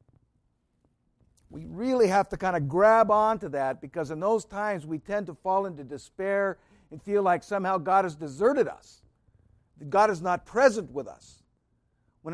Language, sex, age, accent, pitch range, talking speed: English, male, 50-69, American, 155-215 Hz, 175 wpm